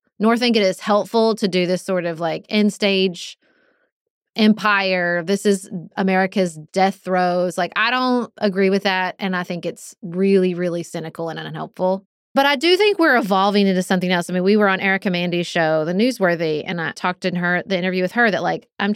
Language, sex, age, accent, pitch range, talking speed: English, female, 20-39, American, 180-230 Hz, 200 wpm